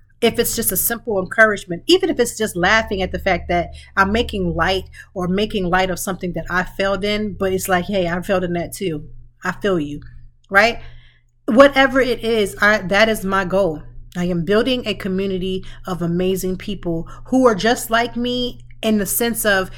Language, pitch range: English, 165-215 Hz